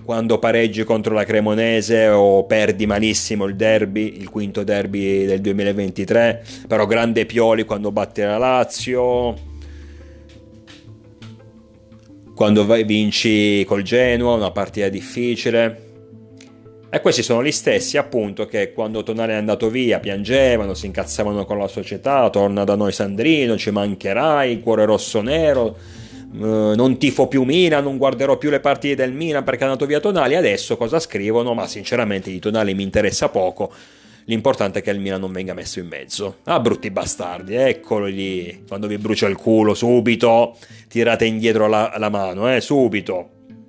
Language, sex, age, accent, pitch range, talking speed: Italian, male, 30-49, native, 100-120 Hz, 155 wpm